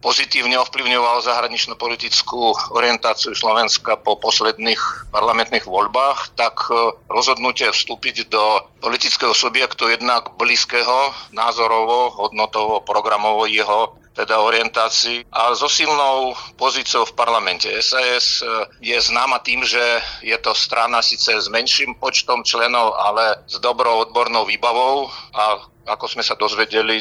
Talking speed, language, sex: 120 wpm, Slovak, male